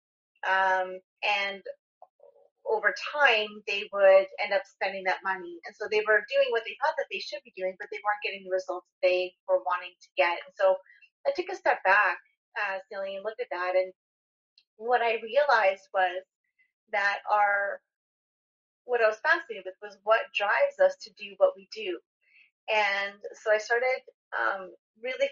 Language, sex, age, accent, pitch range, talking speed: English, female, 30-49, American, 190-270 Hz, 175 wpm